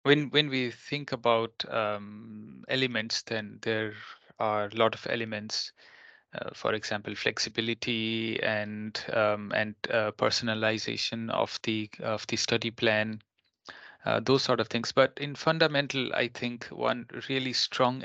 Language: Finnish